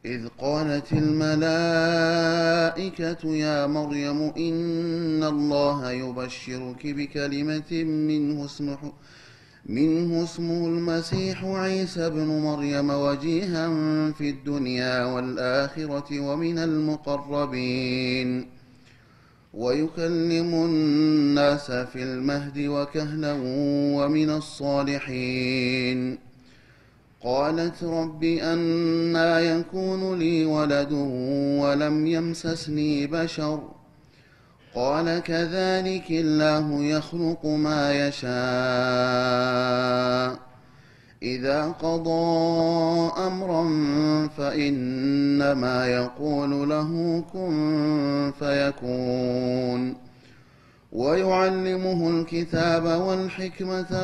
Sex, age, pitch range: male, 30-49, 140-165 Hz